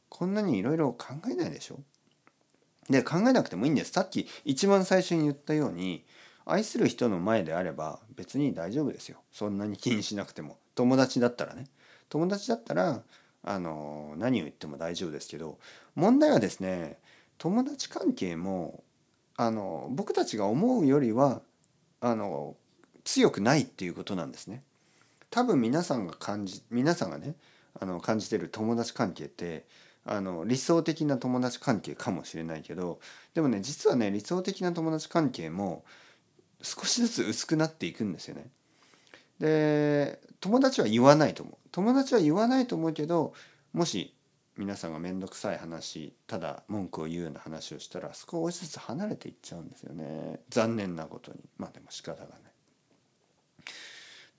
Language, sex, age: Japanese, male, 40-59